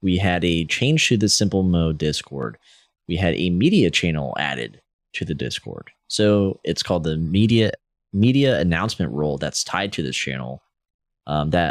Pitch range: 80-105 Hz